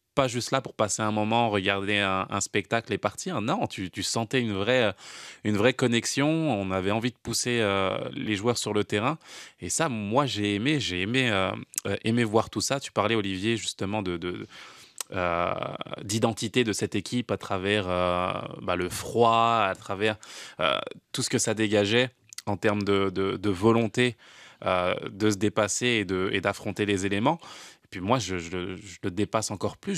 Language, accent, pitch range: French, French, 100-130 Hz